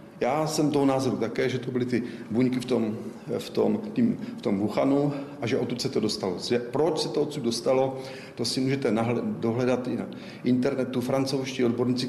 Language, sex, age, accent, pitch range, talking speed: Czech, male, 40-59, native, 120-135 Hz, 200 wpm